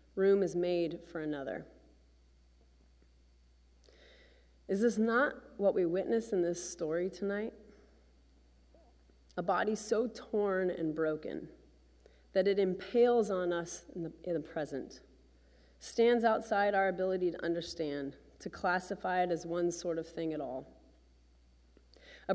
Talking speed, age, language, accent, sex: 125 wpm, 30-49, English, American, female